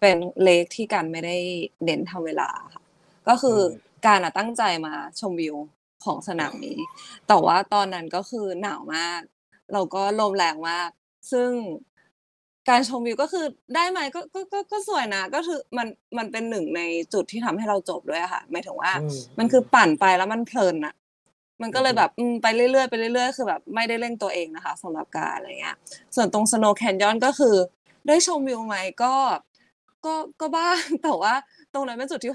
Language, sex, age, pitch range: Thai, female, 20-39, 180-250 Hz